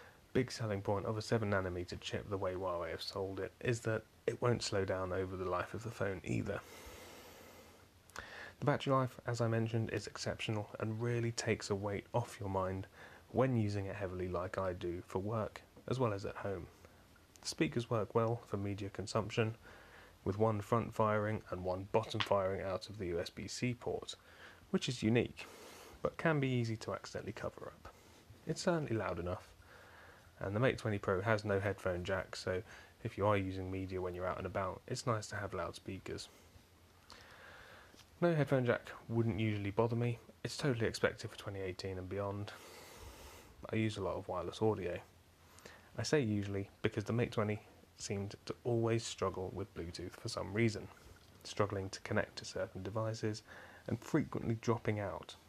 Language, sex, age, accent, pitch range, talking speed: English, male, 30-49, British, 95-115 Hz, 175 wpm